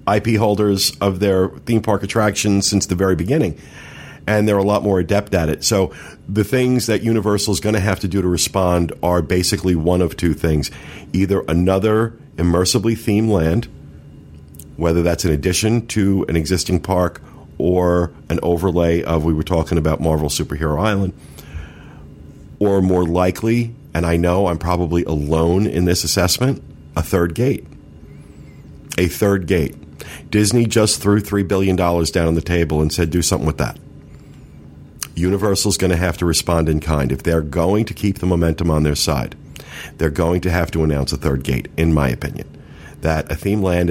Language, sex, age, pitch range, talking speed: English, male, 40-59, 80-100 Hz, 175 wpm